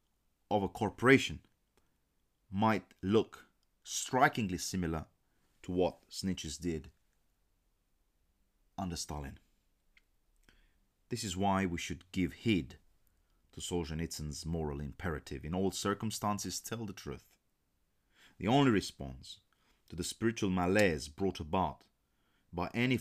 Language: Romanian